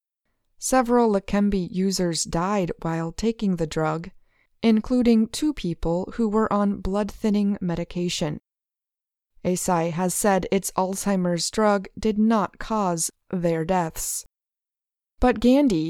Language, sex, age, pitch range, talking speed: English, female, 20-39, 175-220 Hz, 110 wpm